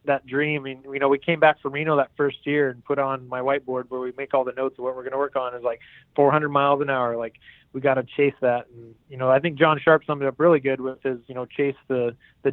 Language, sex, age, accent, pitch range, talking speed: English, male, 20-39, American, 130-150 Hz, 295 wpm